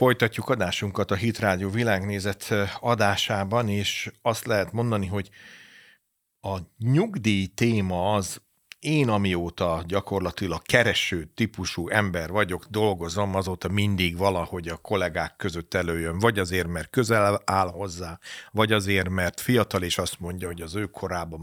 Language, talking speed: Hungarian, 130 wpm